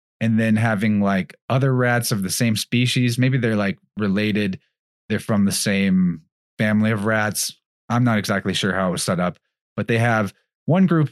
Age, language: 30-49, English